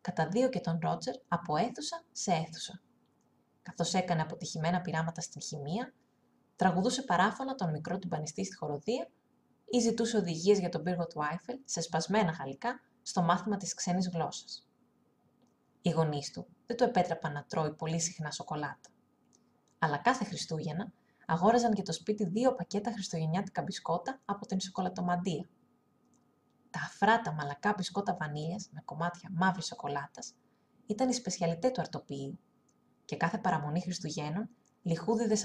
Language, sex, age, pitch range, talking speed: Greek, female, 20-39, 165-225 Hz, 140 wpm